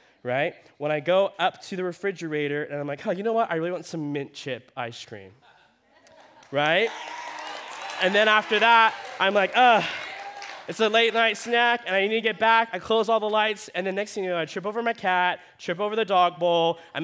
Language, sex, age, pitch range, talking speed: English, male, 20-39, 145-200 Hz, 225 wpm